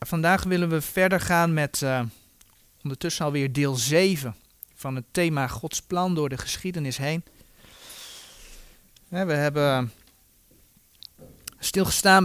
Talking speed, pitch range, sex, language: 120 wpm, 140-185 Hz, male, Dutch